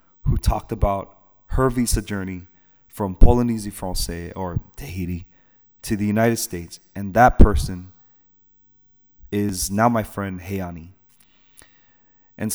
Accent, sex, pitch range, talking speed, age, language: American, male, 100-120 Hz, 115 wpm, 30-49, English